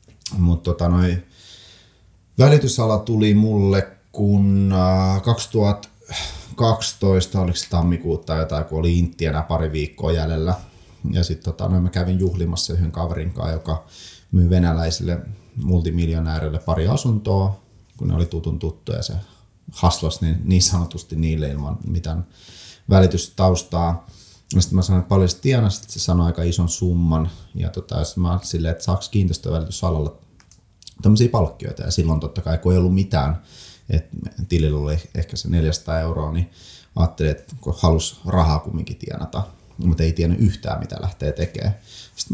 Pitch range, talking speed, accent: 85-100 Hz, 140 wpm, native